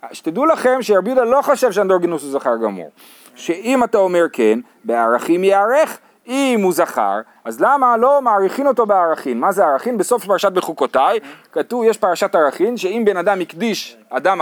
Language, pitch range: Hebrew, 165-255 Hz